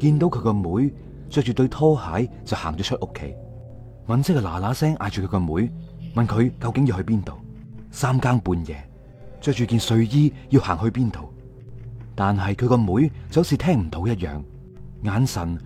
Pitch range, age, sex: 95-130 Hz, 30-49, male